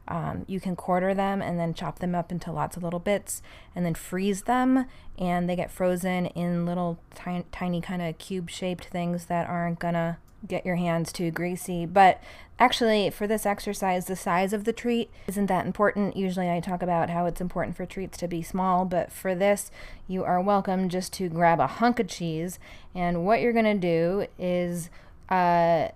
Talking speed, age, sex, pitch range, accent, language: 195 wpm, 20-39, female, 170-195 Hz, American, English